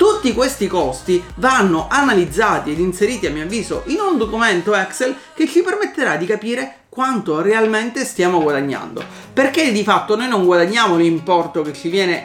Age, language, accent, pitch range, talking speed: 30-49, Italian, native, 175-265 Hz, 160 wpm